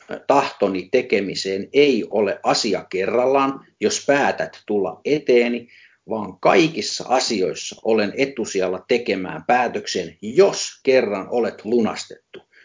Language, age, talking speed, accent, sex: Finnish, 50-69, 100 wpm, native, male